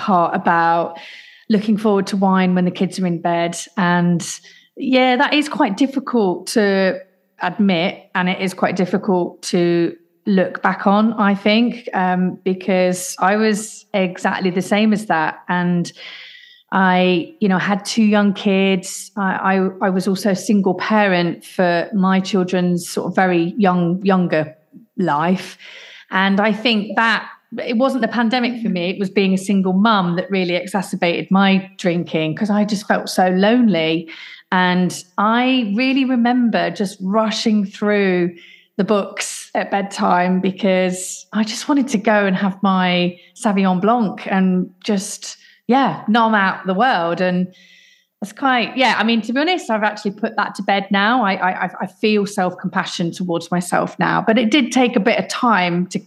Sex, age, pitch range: female, 30-49, 180-220 Hz